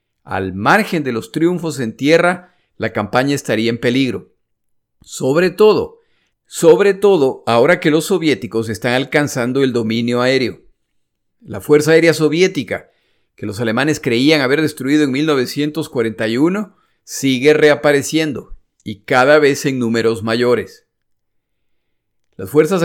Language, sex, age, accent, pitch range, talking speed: Spanish, male, 50-69, Mexican, 120-160 Hz, 125 wpm